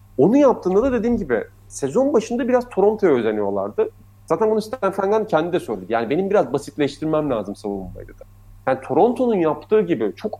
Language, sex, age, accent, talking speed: Turkish, male, 40-59, native, 160 wpm